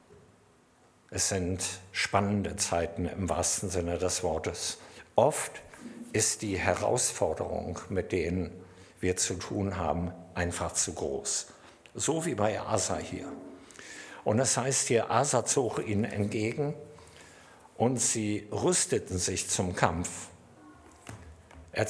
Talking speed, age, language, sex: 115 wpm, 60-79, German, male